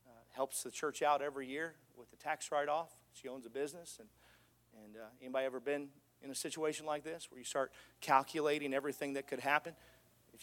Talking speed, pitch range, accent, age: 195 wpm, 135-165 Hz, American, 40-59